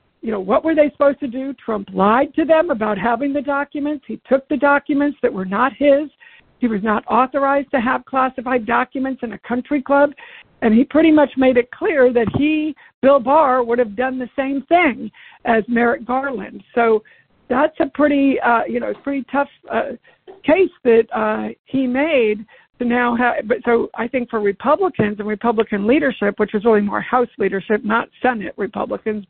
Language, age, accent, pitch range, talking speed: English, 60-79, American, 220-270 Hz, 180 wpm